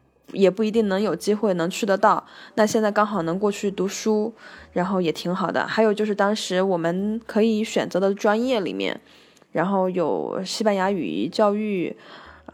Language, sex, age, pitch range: Chinese, female, 20-39, 175-220 Hz